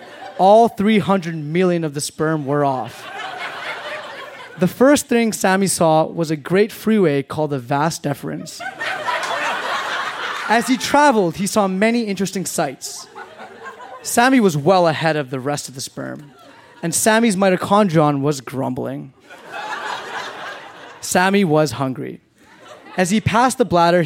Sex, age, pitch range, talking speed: male, 20-39, 155-205 Hz, 130 wpm